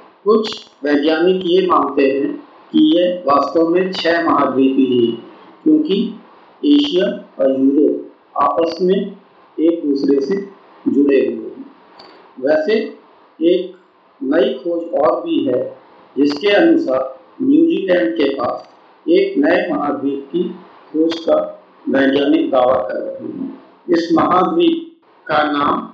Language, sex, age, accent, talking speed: Hindi, male, 50-69, native, 120 wpm